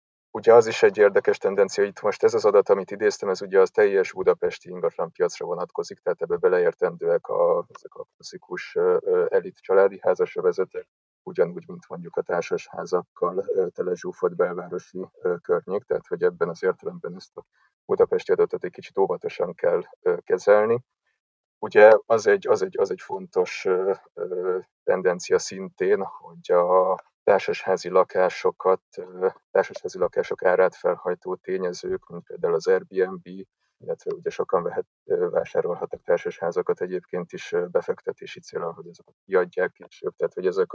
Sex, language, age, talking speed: male, Hungarian, 30-49, 135 wpm